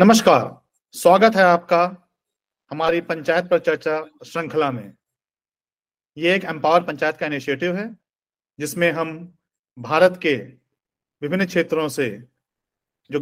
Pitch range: 145-170 Hz